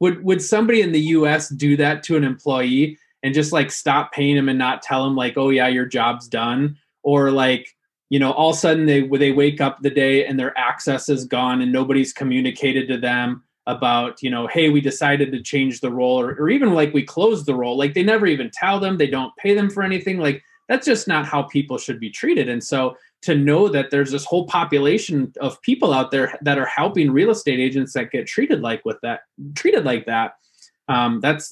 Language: English